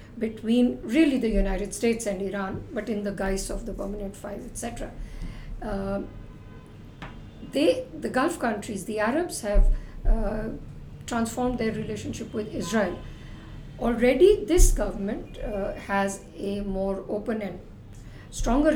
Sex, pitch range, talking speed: female, 185-240 Hz, 130 wpm